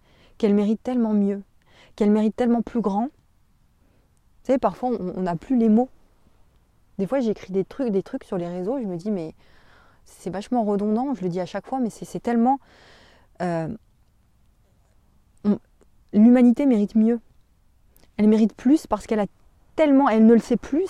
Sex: female